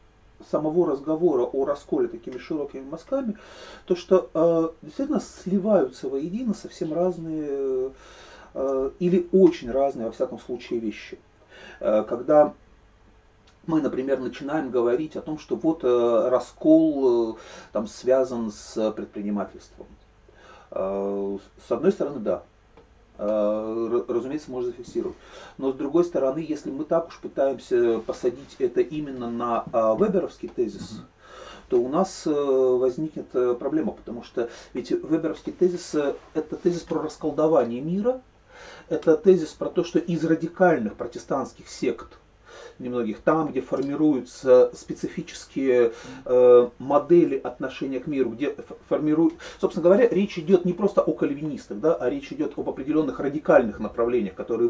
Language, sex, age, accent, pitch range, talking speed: Russian, male, 40-59, native, 125-185 Hz, 125 wpm